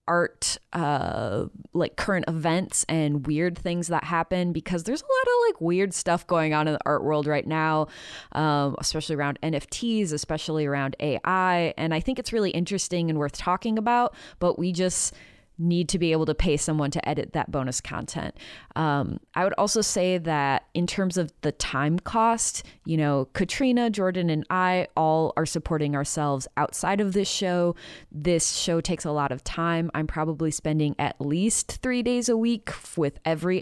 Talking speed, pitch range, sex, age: 180 wpm, 150-185 Hz, female, 20-39